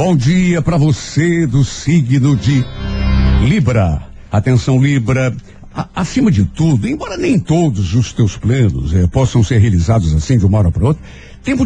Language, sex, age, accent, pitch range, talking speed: Portuguese, male, 60-79, Brazilian, 110-175 Hz, 160 wpm